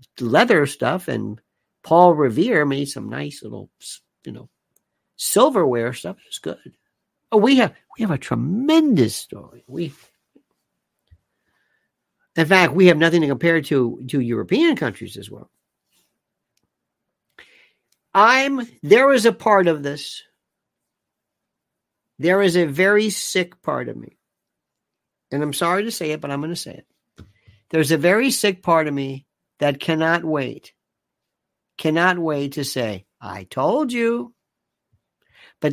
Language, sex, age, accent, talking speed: English, male, 60-79, American, 140 wpm